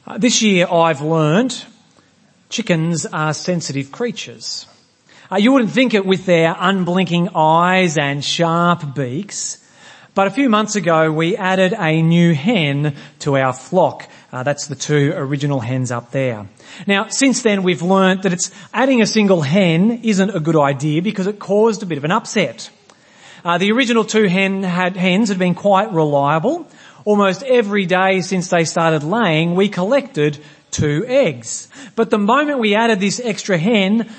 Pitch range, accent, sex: 155-210 Hz, Australian, male